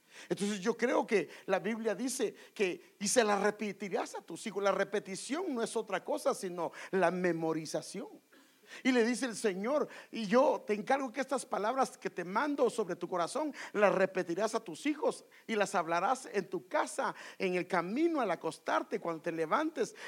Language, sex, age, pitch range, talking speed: English, male, 50-69, 180-250 Hz, 180 wpm